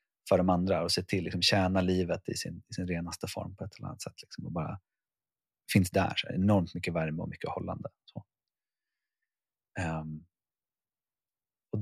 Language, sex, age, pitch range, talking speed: Swedish, male, 30-49, 85-100 Hz, 195 wpm